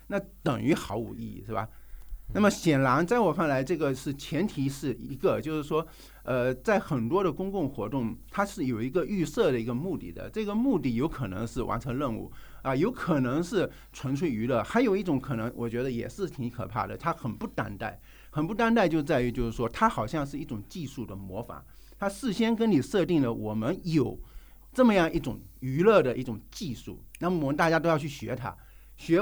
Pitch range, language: 120-180 Hz, Chinese